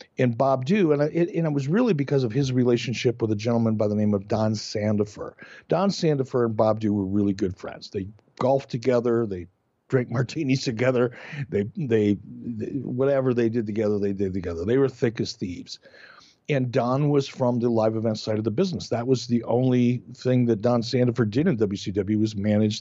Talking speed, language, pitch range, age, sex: 205 wpm, English, 110-140 Hz, 60-79, male